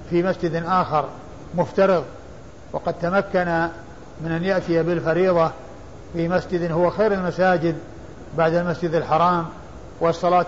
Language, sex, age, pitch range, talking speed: Arabic, male, 50-69, 165-190 Hz, 110 wpm